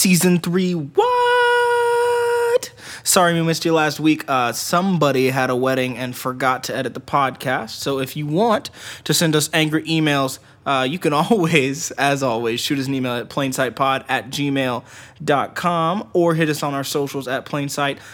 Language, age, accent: English, 20-39, American